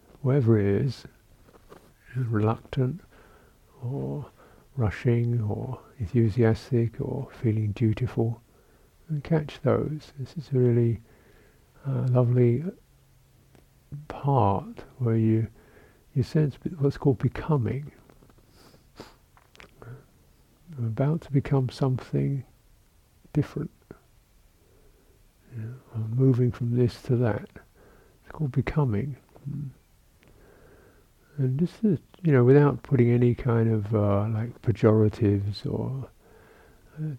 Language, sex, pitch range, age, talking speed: English, male, 110-135 Hz, 50-69, 100 wpm